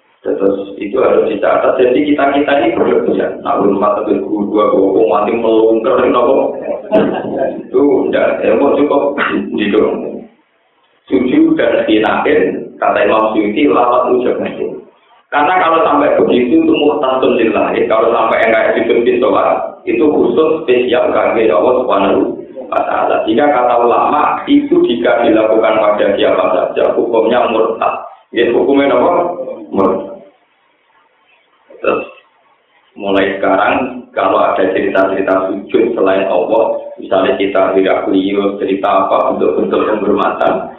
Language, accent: Indonesian, native